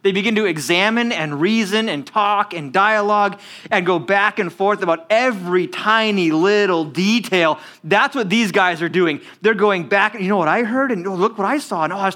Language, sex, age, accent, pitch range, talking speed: English, male, 30-49, American, 185-230 Hz, 210 wpm